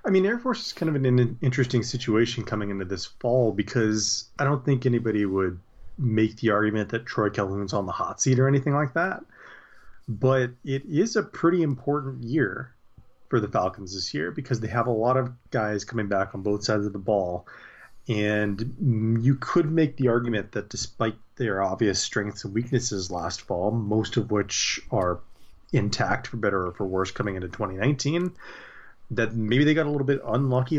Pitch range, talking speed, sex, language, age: 105-135 Hz, 190 wpm, male, English, 30-49